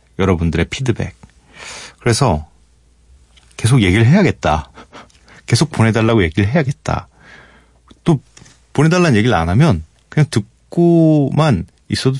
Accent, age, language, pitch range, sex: native, 40-59, Korean, 80-140 Hz, male